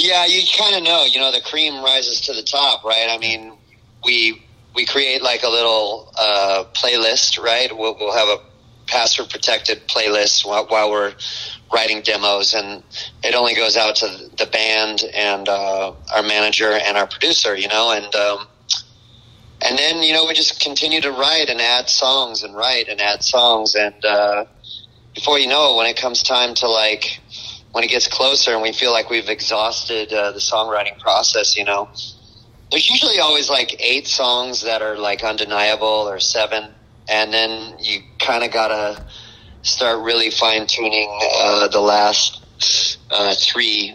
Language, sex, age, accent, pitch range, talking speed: English, male, 30-49, American, 105-125 Hz, 175 wpm